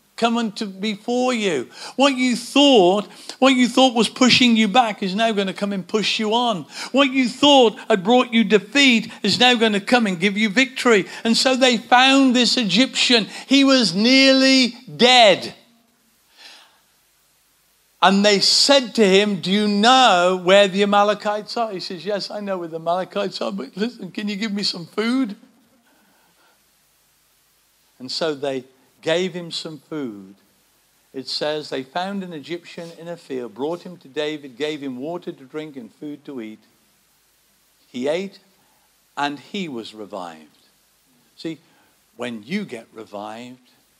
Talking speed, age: 160 wpm, 50-69